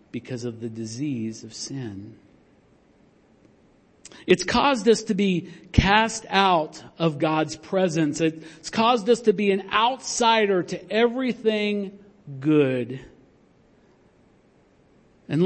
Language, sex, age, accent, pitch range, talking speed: English, male, 50-69, American, 155-220 Hz, 105 wpm